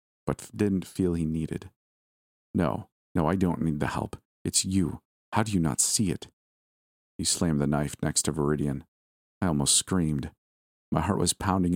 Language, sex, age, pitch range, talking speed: English, male, 40-59, 75-90 Hz, 175 wpm